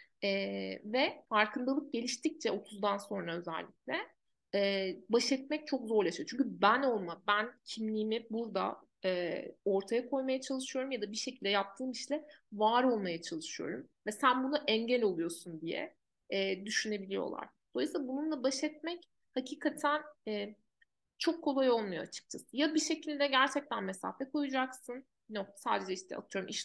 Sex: female